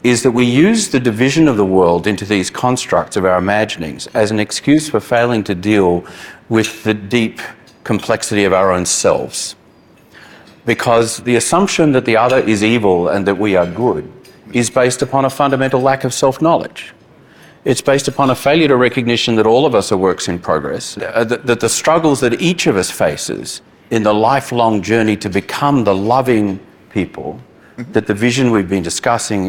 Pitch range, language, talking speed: 105-130 Hz, English, 180 wpm